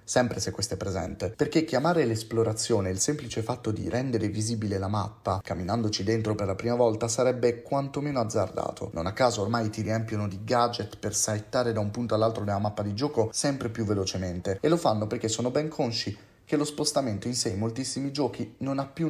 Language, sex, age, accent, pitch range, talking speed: Italian, male, 30-49, native, 100-120 Hz, 200 wpm